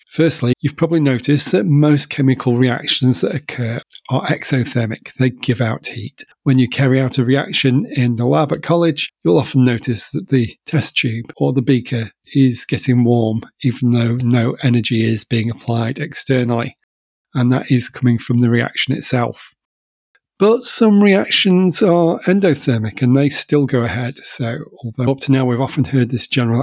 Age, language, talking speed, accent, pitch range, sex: 40-59, English, 170 wpm, British, 120-140 Hz, male